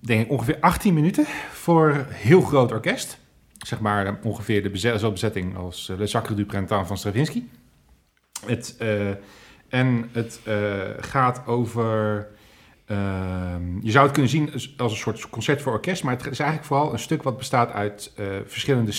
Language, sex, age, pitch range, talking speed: Dutch, male, 40-59, 105-135 Hz, 170 wpm